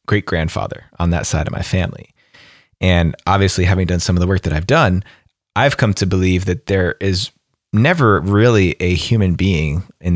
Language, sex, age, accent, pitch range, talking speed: English, male, 30-49, American, 85-115 Hz, 185 wpm